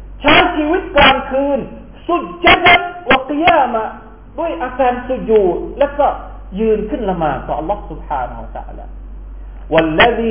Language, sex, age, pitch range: Thai, male, 40-59, 175-275 Hz